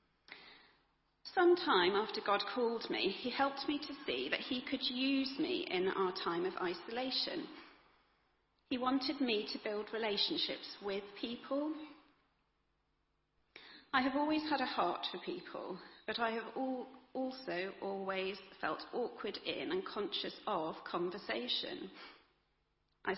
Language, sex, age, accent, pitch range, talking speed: English, female, 40-59, British, 210-275 Hz, 125 wpm